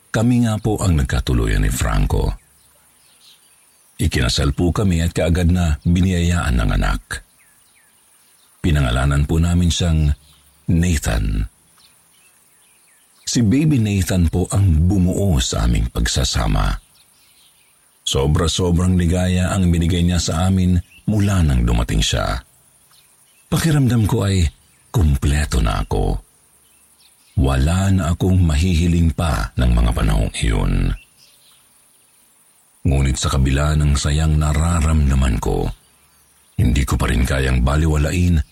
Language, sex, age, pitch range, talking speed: Filipino, male, 50-69, 75-100 Hz, 105 wpm